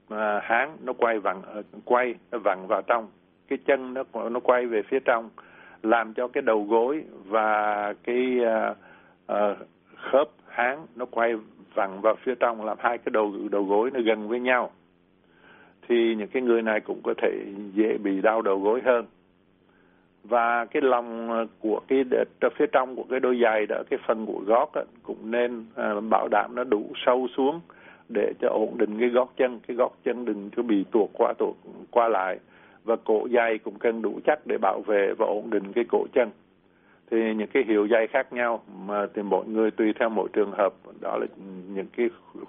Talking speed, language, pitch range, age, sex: 195 wpm, Vietnamese, 105-125 Hz, 60-79, male